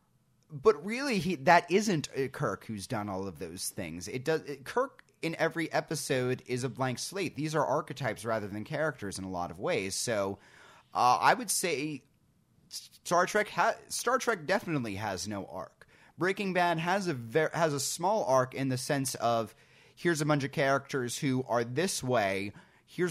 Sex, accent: male, American